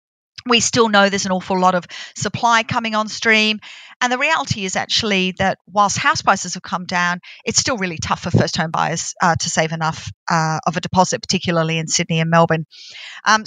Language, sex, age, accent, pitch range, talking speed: English, female, 40-59, Australian, 175-215 Hz, 205 wpm